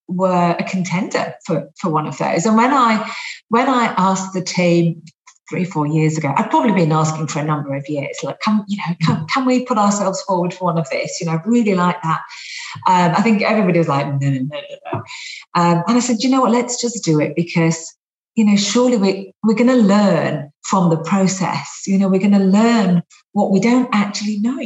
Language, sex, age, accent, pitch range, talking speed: English, female, 40-59, British, 170-230 Hz, 230 wpm